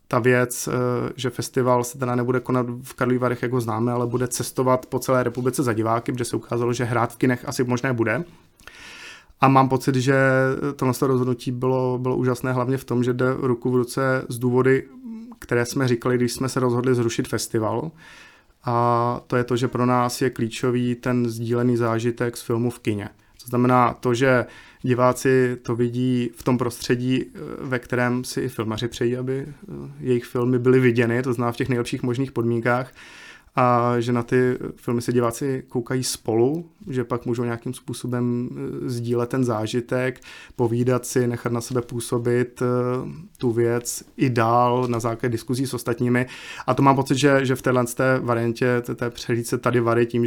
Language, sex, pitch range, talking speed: Czech, male, 120-130 Hz, 175 wpm